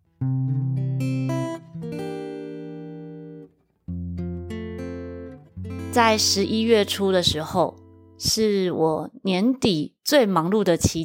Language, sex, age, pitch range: Chinese, female, 30-49, 160-215 Hz